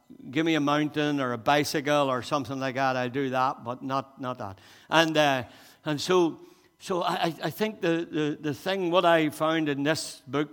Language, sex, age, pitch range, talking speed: English, male, 60-79, 115-150 Hz, 205 wpm